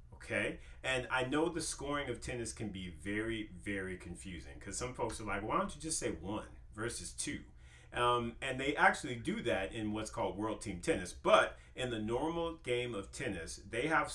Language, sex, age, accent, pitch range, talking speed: English, male, 40-59, American, 80-110 Hz, 200 wpm